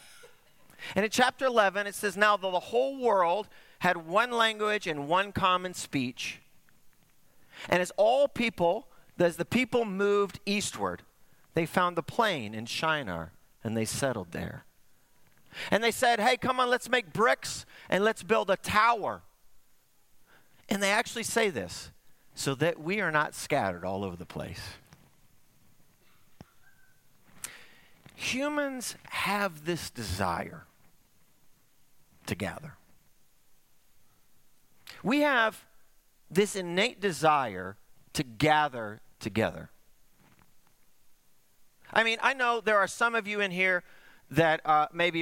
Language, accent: English, American